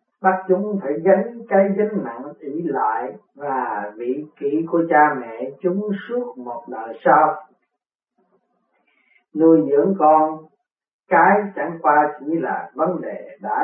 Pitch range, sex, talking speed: 150-190 Hz, male, 135 wpm